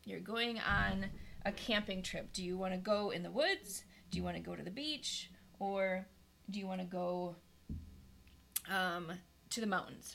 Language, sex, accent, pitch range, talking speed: English, female, American, 185-230 Hz, 190 wpm